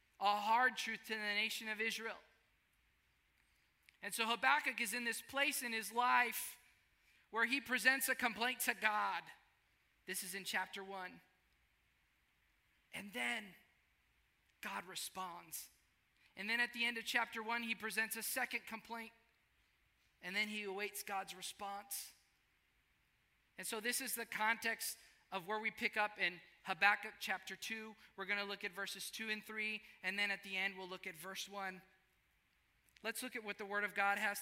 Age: 20-39